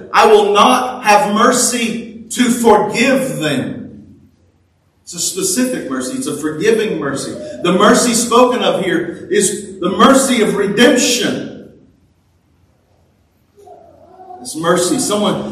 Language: English